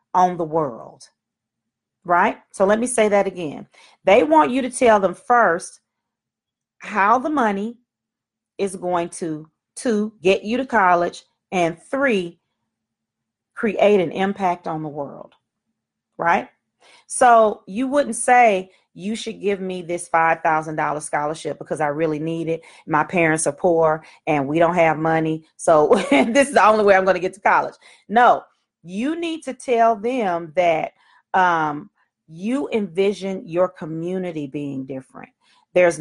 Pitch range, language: 165-205 Hz, English